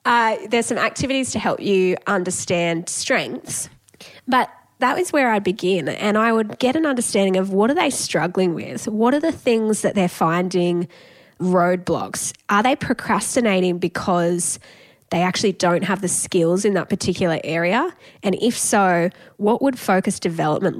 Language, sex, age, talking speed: English, female, 10-29, 160 wpm